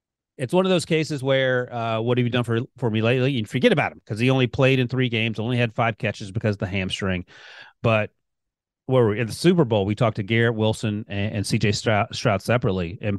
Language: English